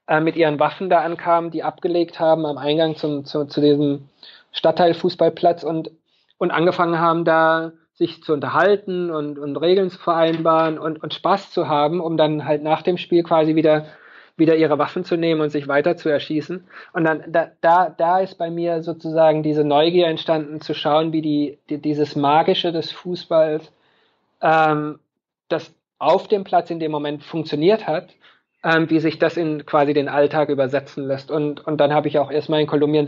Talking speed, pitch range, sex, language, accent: 180 wpm, 150-170 Hz, male, German, German